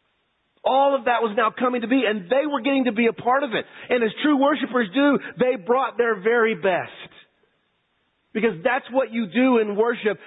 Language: English